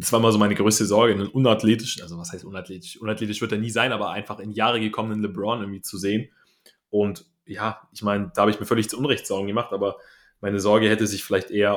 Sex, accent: male, German